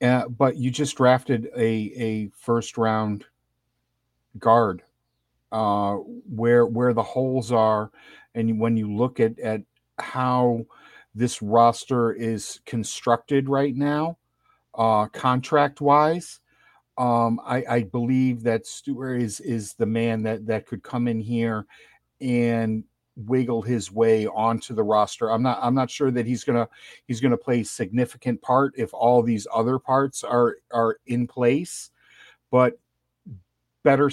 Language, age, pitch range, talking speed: English, 50-69, 110-125 Hz, 140 wpm